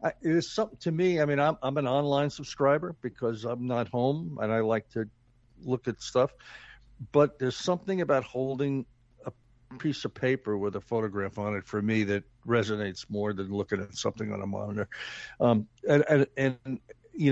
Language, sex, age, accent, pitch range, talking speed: English, male, 60-79, American, 115-145 Hz, 185 wpm